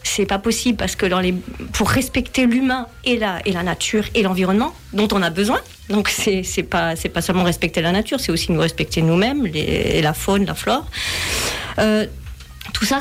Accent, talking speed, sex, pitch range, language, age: French, 200 wpm, female, 195-240 Hz, French, 40-59